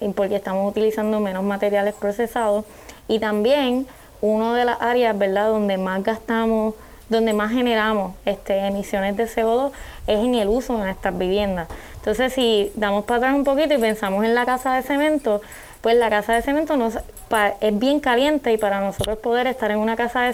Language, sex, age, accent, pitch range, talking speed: Spanish, female, 20-39, American, 200-240 Hz, 175 wpm